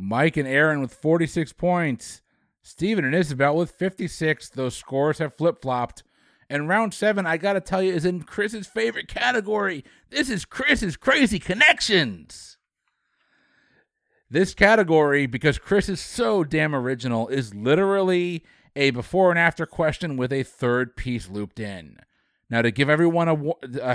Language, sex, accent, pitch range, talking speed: English, male, American, 130-180 Hz, 150 wpm